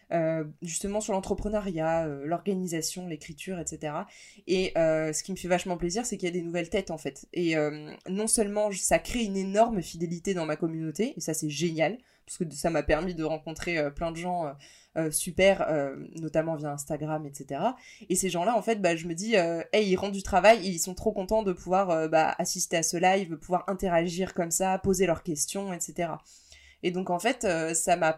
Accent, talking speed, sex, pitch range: French, 215 wpm, female, 160-195 Hz